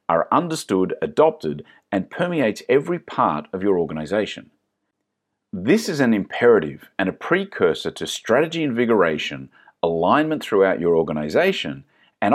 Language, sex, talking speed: English, male, 120 wpm